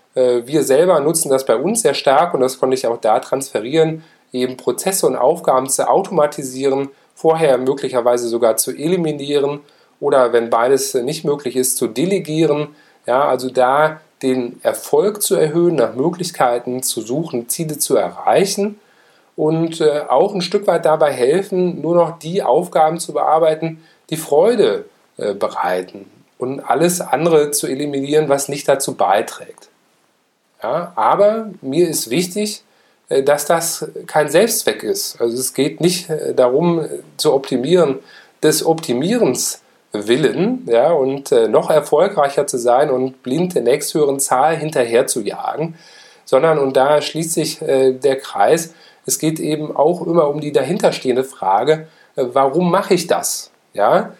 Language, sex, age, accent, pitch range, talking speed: German, male, 40-59, German, 135-175 Hz, 140 wpm